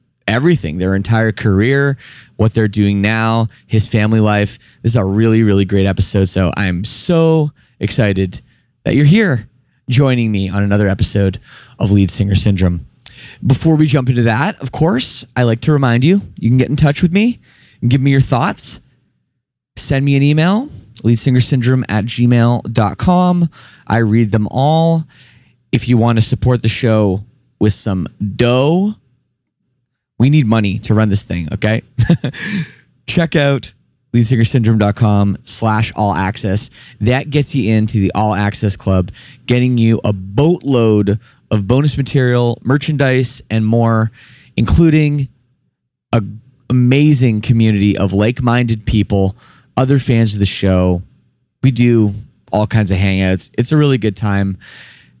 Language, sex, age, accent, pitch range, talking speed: English, male, 20-39, American, 105-135 Hz, 145 wpm